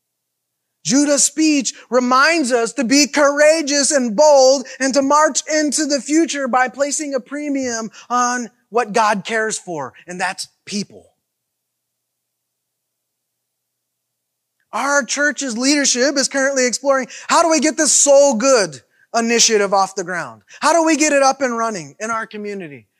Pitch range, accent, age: 225-285 Hz, American, 20-39